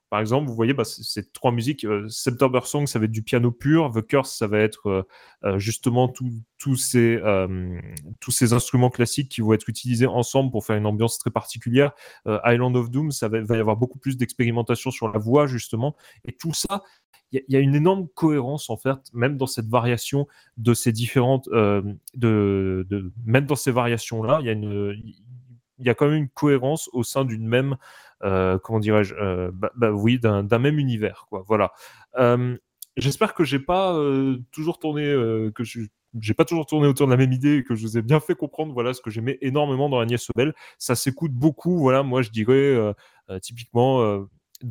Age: 30-49